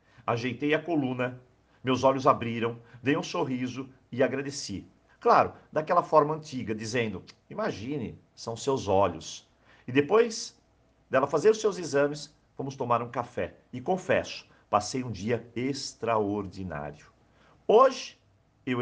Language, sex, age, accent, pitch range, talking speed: Portuguese, male, 50-69, Brazilian, 110-150 Hz, 125 wpm